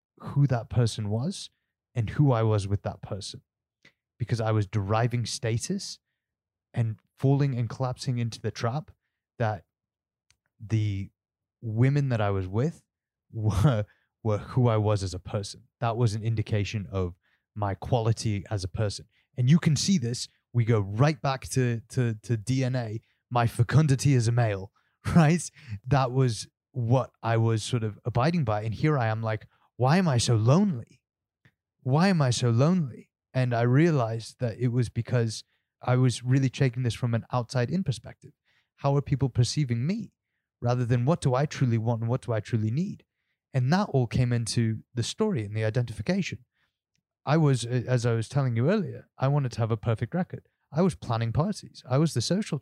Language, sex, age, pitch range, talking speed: English, male, 20-39, 110-135 Hz, 180 wpm